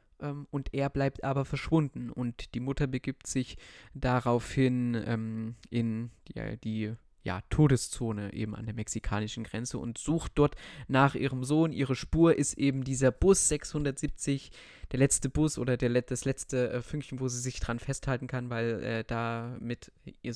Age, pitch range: 20-39, 115-140 Hz